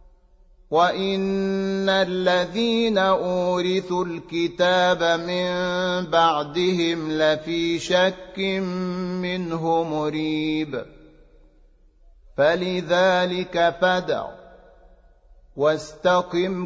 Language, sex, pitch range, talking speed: Arabic, male, 180-190 Hz, 45 wpm